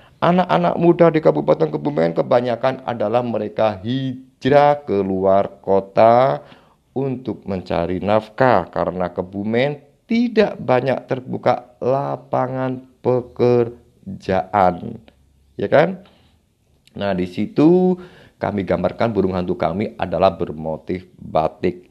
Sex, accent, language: male, native, Indonesian